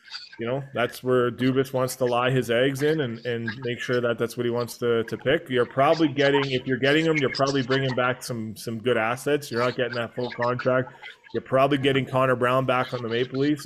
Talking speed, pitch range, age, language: 235 wpm, 115-130 Hz, 20-39, English